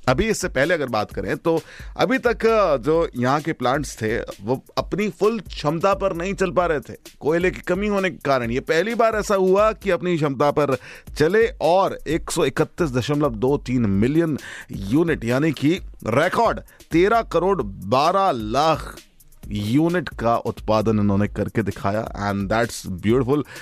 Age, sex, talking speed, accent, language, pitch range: 30-49, male, 160 wpm, native, Hindi, 105-160 Hz